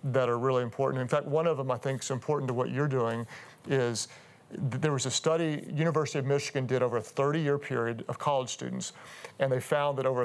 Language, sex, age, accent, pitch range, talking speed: English, male, 40-59, American, 125-145 Hz, 220 wpm